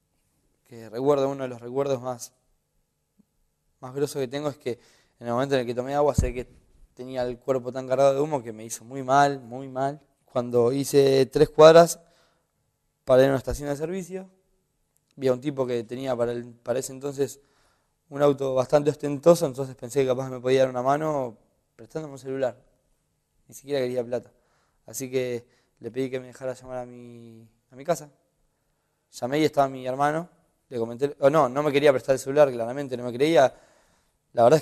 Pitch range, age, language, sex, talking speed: 125-150 Hz, 20-39, Spanish, male, 200 wpm